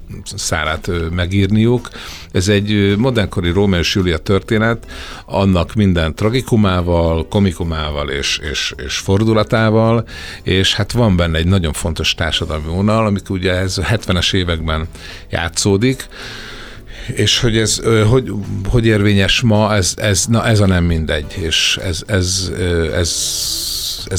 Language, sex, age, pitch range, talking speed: Hungarian, male, 60-79, 80-105 Hz, 130 wpm